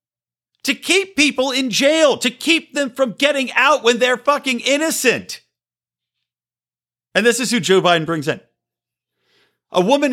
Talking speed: 150 wpm